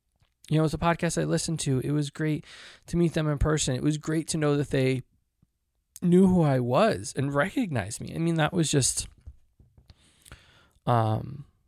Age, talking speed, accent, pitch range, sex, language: 20-39, 190 wpm, American, 110-135 Hz, male, English